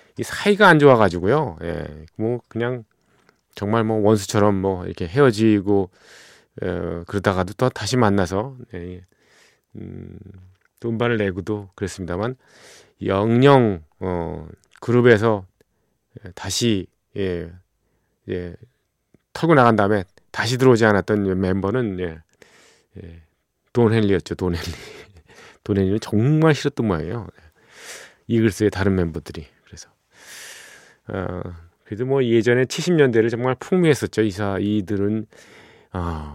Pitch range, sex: 90-125 Hz, male